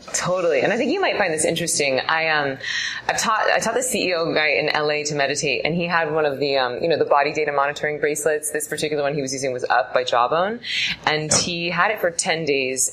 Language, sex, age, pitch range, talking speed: English, female, 20-39, 150-190 Hz, 245 wpm